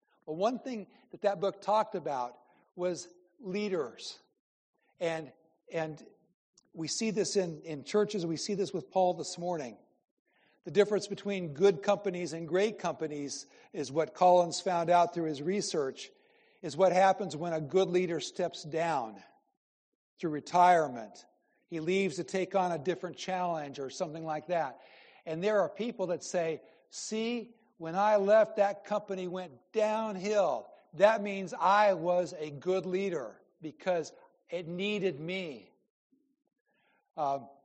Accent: American